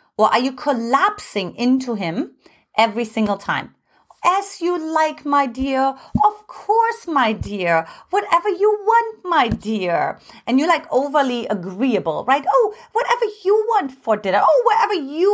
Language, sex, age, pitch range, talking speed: English, female, 30-49, 215-340 Hz, 150 wpm